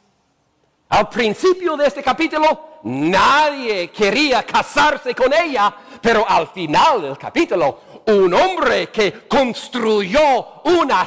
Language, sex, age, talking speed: English, male, 50-69, 110 wpm